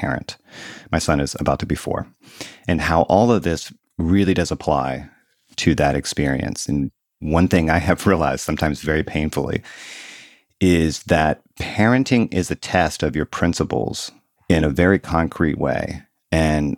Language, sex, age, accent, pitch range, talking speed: English, male, 40-59, American, 75-95 Hz, 155 wpm